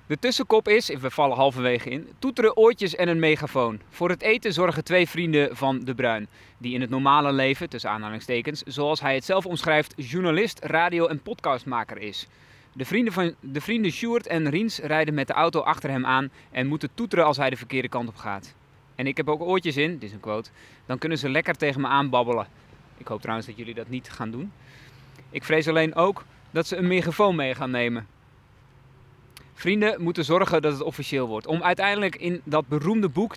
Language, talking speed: Dutch, 200 wpm